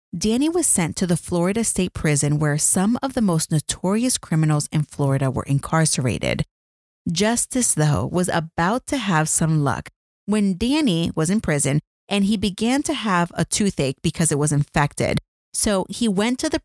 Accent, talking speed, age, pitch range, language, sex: American, 175 wpm, 30-49, 150-210 Hz, English, female